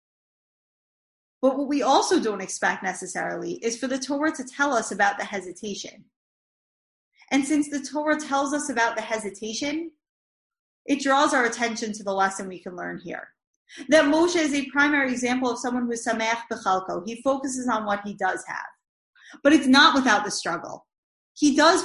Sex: female